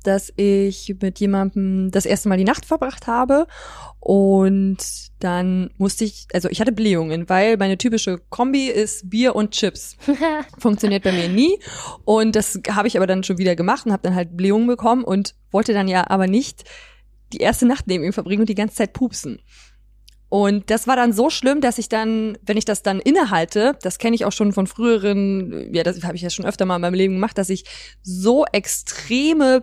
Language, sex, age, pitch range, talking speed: German, female, 20-39, 195-240 Hz, 205 wpm